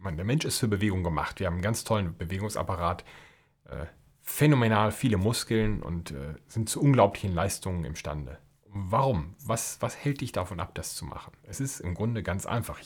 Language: German